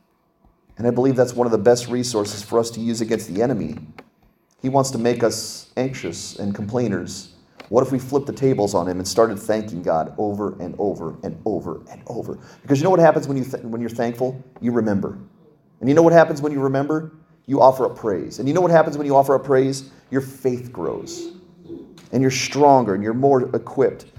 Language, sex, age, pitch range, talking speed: English, male, 30-49, 110-145 Hz, 215 wpm